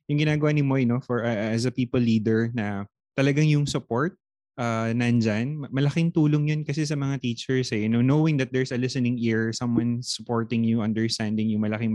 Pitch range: 115-150 Hz